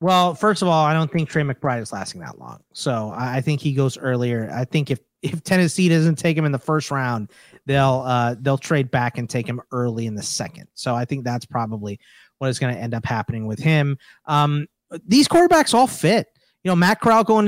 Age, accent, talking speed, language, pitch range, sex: 30-49, American, 230 wpm, English, 135-180 Hz, male